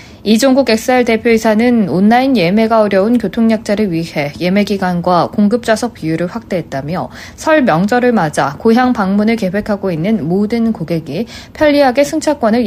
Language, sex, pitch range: Korean, female, 190-255 Hz